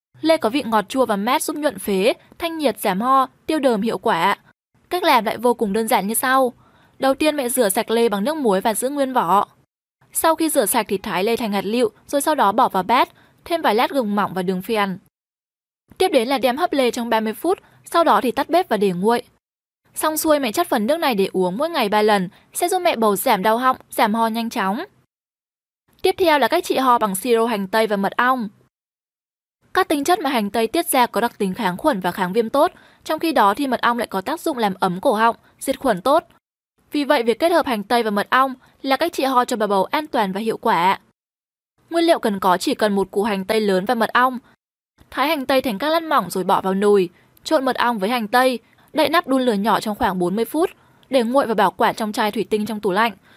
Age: 10-29